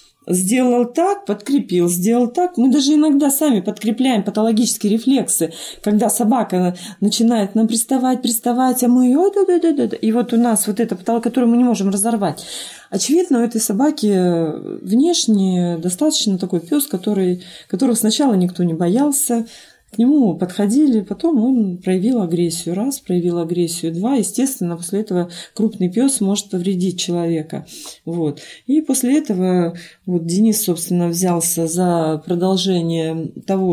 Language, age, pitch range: Russian, 20-39, 180-240 Hz